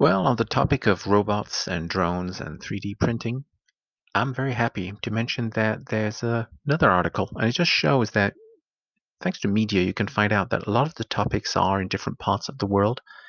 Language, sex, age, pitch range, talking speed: English, male, 50-69, 100-130 Hz, 205 wpm